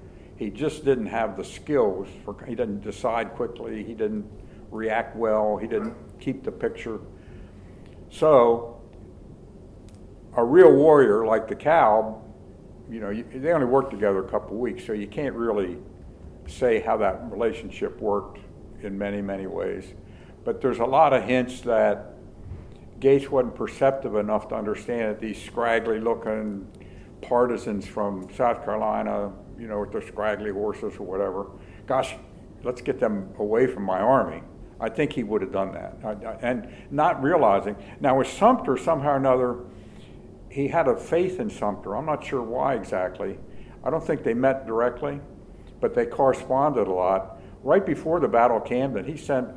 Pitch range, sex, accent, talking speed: 100-125 Hz, male, American, 160 wpm